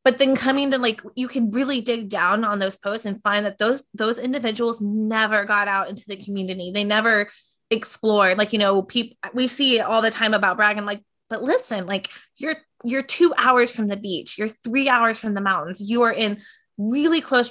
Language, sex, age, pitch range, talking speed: English, female, 20-39, 200-240 Hz, 215 wpm